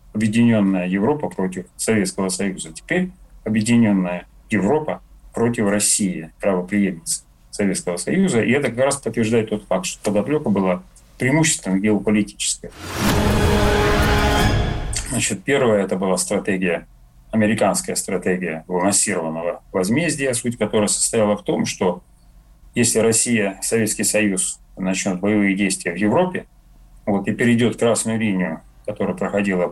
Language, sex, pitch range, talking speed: Russian, male, 90-115 Hz, 110 wpm